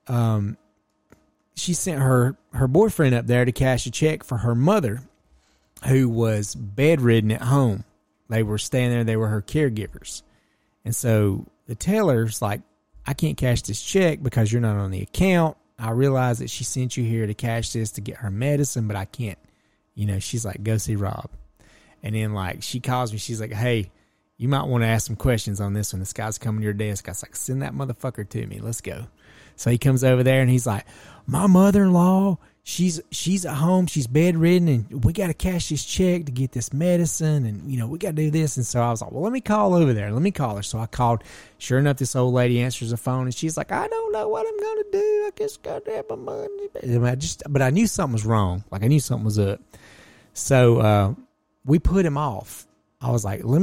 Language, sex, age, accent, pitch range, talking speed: English, male, 30-49, American, 105-150 Hz, 230 wpm